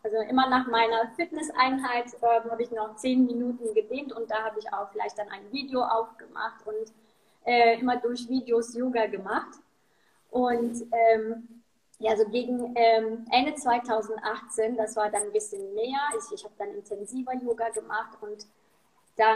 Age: 20-39